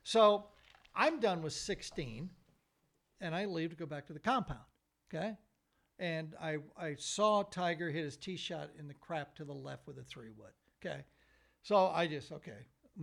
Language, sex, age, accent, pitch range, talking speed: English, male, 60-79, American, 155-220 Hz, 185 wpm